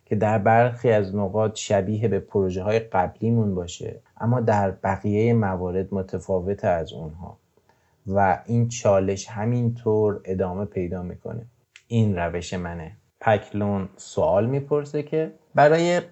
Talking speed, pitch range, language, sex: 125 wpm, 100-120 Hz, Persian, male